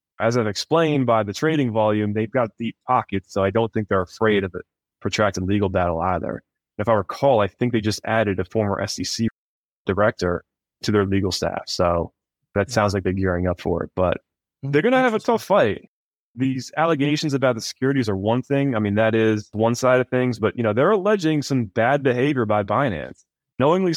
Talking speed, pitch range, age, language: 210 wpm, 100-125 Hz, 20-39, English